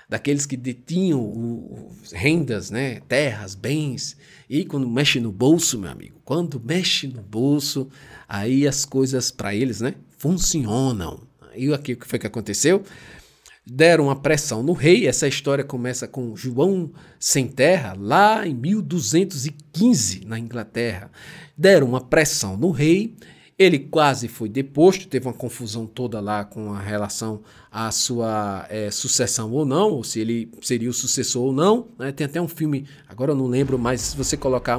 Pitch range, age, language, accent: 115-160 Hz, 50-69, Portuguese, Brazilian